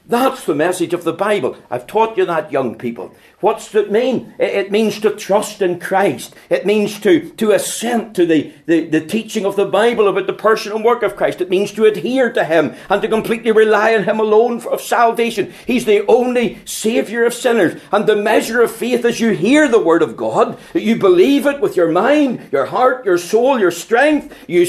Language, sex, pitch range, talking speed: English, male, 175-235 Hz, 210 wpm